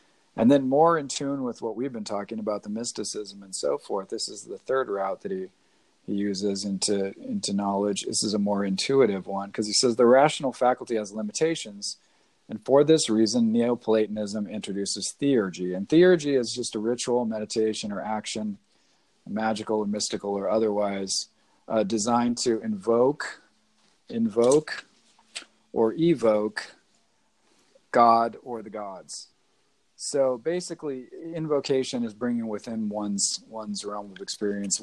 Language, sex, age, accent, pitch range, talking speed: English, male, 40-59, American, 100-125 Hz, 145 wpm